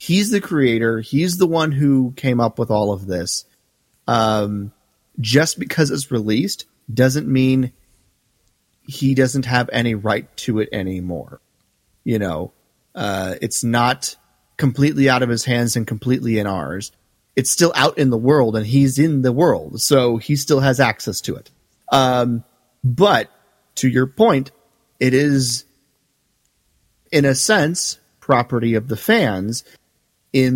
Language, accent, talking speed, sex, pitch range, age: English, American, 145 wpm, male, 105-135 Hz, 30-49